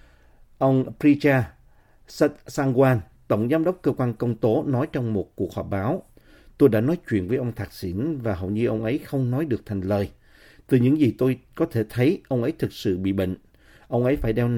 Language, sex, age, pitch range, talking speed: Vietnamese, male, 50-69, 105-135 Hz, 210 wpm